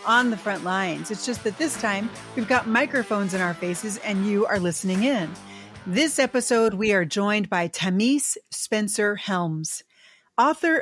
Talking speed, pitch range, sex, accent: 160 wpm, 190-240 Hz, female, American